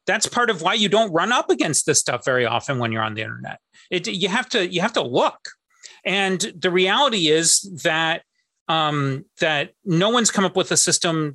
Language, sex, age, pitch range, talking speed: English, male, 30-49, 160-215 Hz, 210 wpm